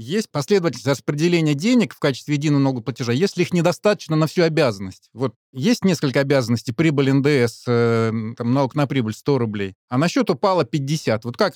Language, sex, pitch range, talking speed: Russian, male, 125-165 Hz, 170 wpm